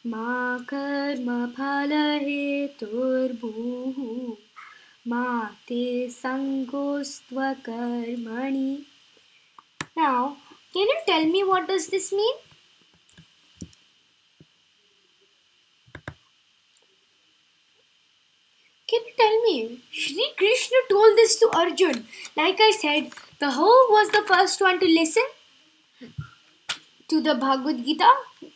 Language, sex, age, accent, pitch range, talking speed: Hindi, female, 20-39, native, 270-420 Hz, 40 wpm